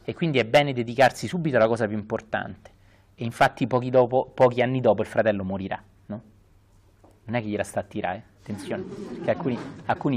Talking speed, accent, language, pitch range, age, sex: 190 wpm, native, Italian, 100-130 Hz, 30-49, male